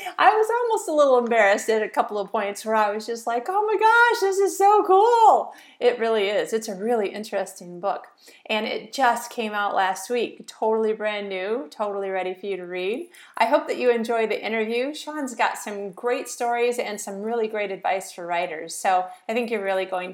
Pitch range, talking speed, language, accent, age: 205-275 Hz, 215 wpm, English, American, 40-59